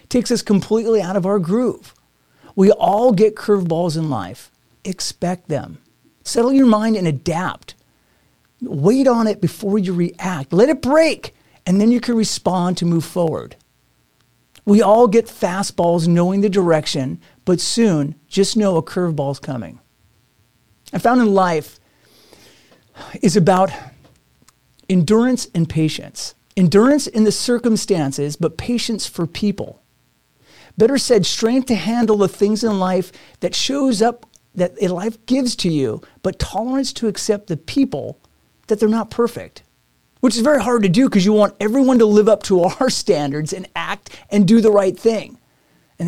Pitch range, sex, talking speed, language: 155-220 Hz, male, 155 wpm, English